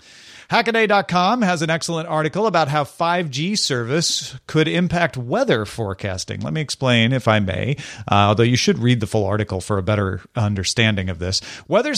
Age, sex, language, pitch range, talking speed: 40-59, male, English, 125-165 Hz, 170 wpm